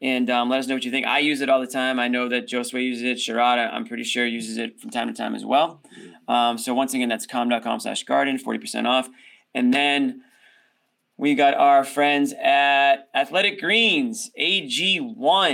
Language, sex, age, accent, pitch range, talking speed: English, male, 20-39, American, 125-145 Hz, 200 wpm